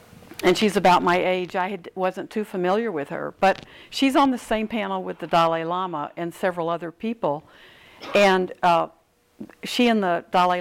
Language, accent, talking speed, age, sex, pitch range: English, American, 175 wpm, 60-79, female, 175-215 Hz